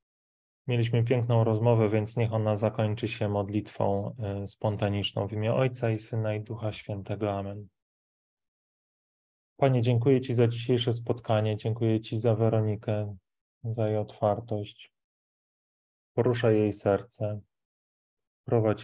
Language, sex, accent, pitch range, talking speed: Polish, male, native, 105-115 Hz, 115 wpm